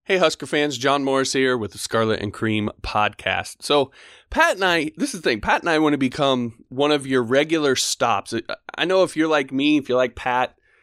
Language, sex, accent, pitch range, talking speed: English, male, American, 110-135 Hz, 225 wpm